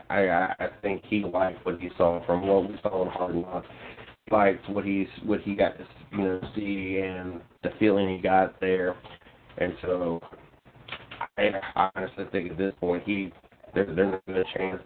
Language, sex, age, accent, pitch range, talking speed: English, male, 30-49, American, 90-95 Hz, 180 wpm